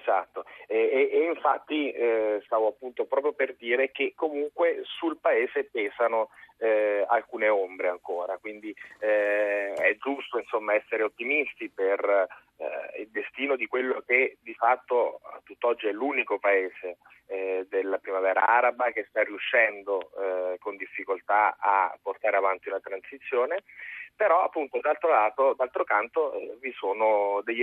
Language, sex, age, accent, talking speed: Italian, male, 30-49, native, 140 wpm